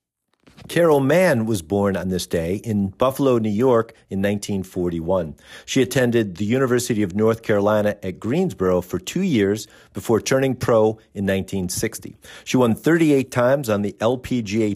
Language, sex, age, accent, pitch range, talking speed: English, male, 50-69, American, 100-125 Hz, 150 wpm